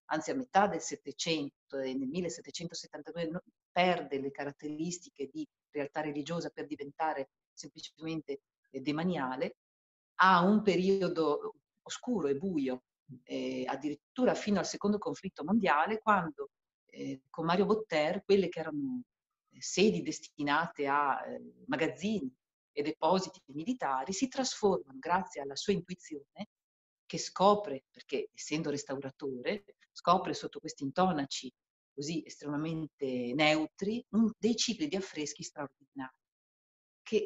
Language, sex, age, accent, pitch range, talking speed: Italian, female, 40-59, native, 145-200 Hz, 120 wpm